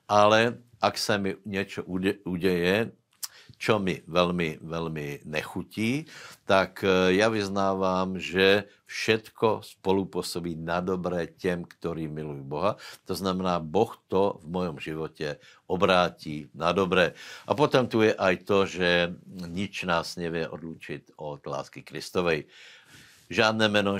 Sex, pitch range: male, 85-100 Hz